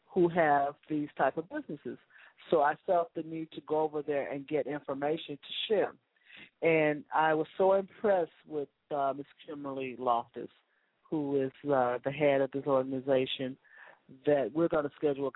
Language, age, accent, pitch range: English, 40-59, American, 130-155 Hz